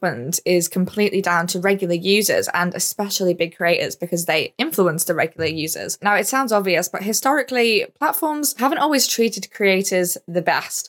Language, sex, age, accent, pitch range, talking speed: English, female, 10-29, British, 170-210 Hz, 160 wpm